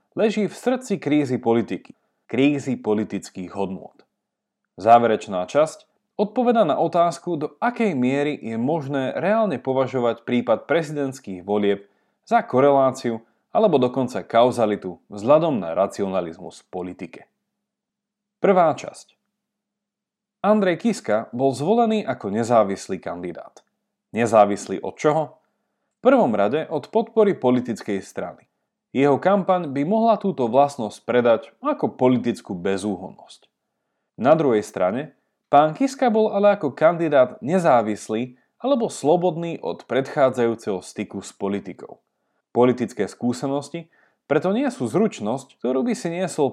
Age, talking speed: 30-49, 115 wpm